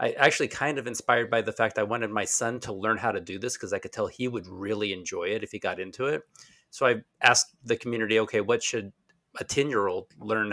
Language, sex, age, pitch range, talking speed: English, male, 40-59, 110-145 Hz, 245 wpm